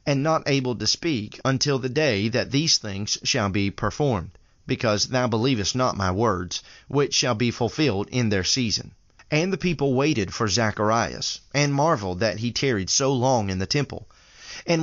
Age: 30-49